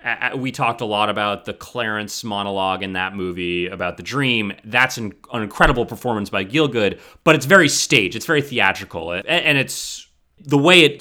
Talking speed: 175 wpm